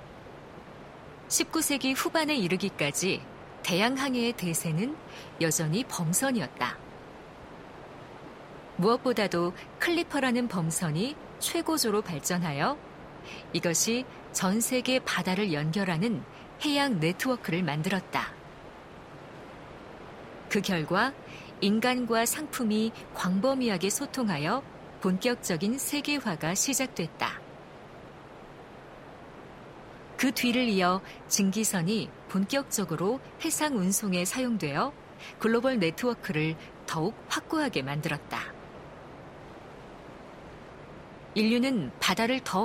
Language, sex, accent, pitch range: Korean, female, native, 175-250 Hz